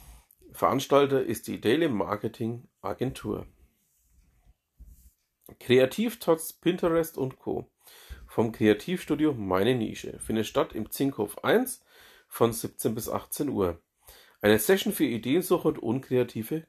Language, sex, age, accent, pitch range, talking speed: German, male, 40-59, German, 105-165 Hz, 110 wpm